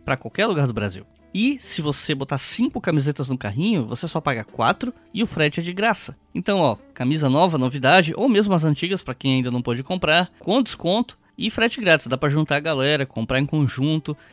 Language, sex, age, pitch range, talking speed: Portuguese, male, 10-29, 125-180 Hz, 215 wpm